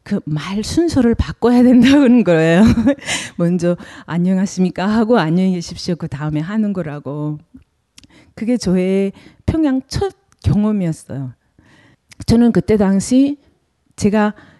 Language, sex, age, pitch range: Korean, female, 40-59, 155-215 Hz